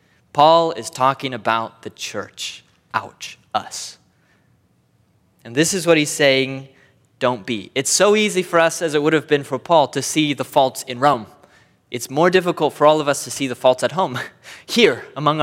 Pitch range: 125-180 Hz